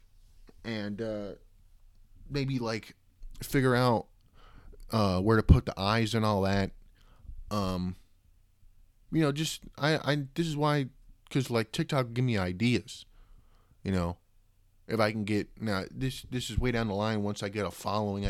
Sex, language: male, English